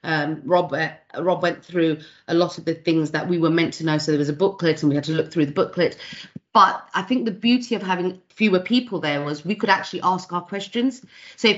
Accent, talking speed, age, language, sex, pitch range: British, 250 wpm, 30-49, English, female, 160-195 Hz